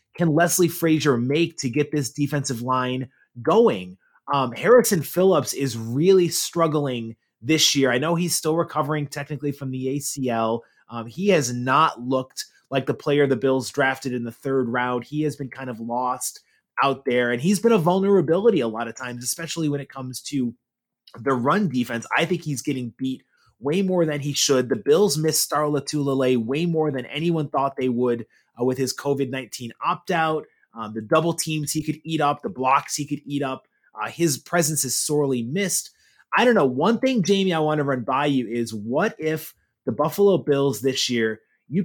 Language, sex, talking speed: English, male, 190 wpm